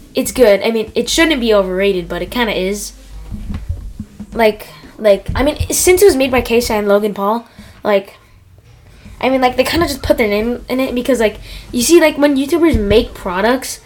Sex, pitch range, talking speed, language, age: female, 195-275 Hz, 210 wpm, English, 10-29